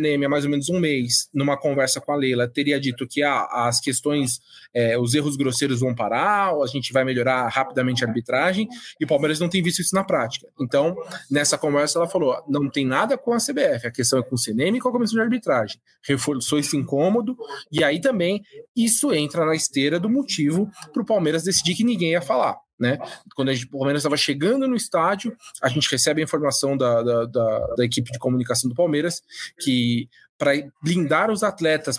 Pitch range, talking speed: 135-200 Hz, 210 wpm